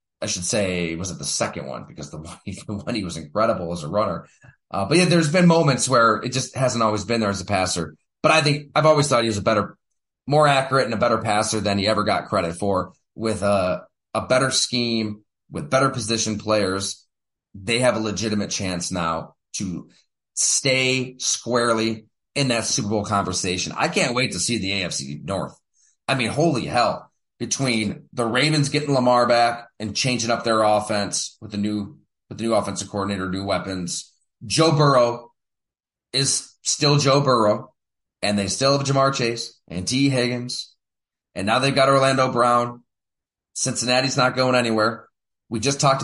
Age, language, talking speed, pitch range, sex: 30-49, English, 185 wpm, 100-135 Hz, male